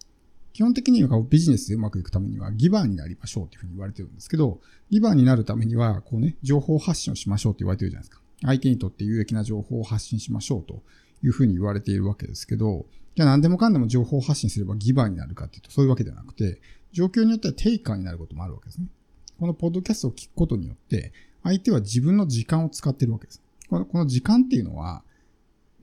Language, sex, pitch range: Japanese, male, 105-155 Hz